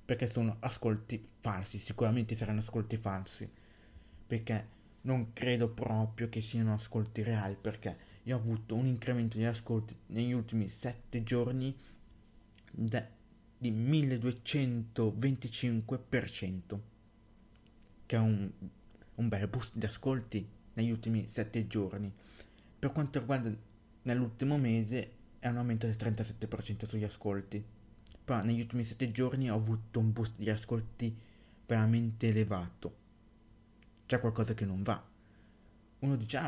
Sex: male